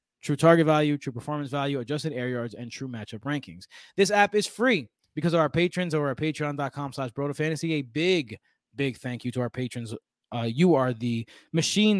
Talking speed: 190 wpm